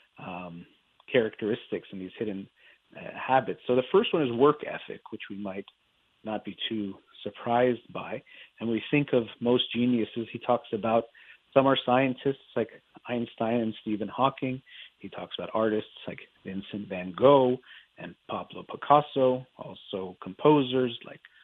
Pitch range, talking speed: 110-130 Hz, 150 wpm